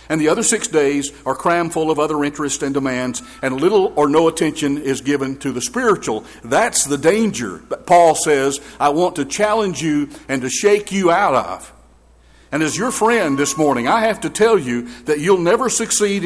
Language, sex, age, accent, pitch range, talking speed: English, male, 50-69, American, 135-170 Hz, 205 wpm